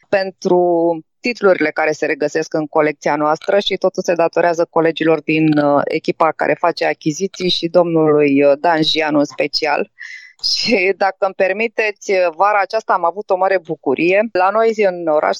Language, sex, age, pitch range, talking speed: Romanian, female, 20-39, 160-205 Hz, 150 wpm